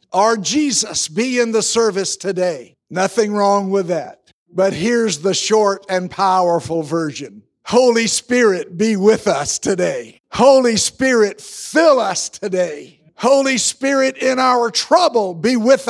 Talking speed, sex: 135 wpm, male